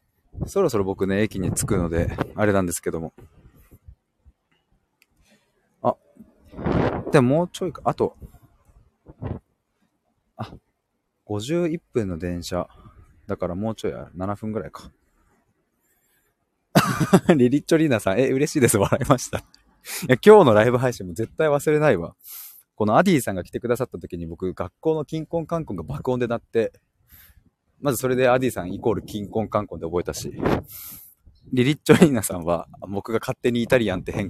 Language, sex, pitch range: Japanese, male, 95-145 Hz